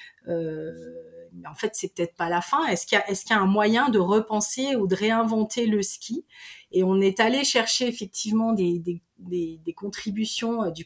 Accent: French